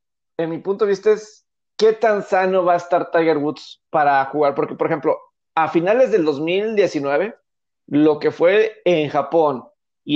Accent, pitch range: Mexican, 160-215 Hz